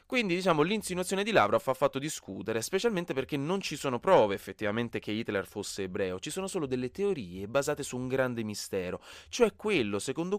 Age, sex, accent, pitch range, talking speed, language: 20-39, male, native, 100-155 Hz, 185 wpm, Italian